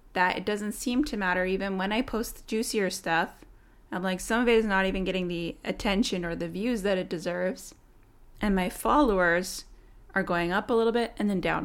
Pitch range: 175-205 Hz